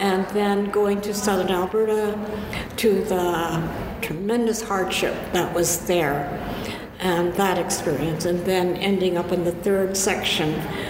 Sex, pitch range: female, 170-210 Hz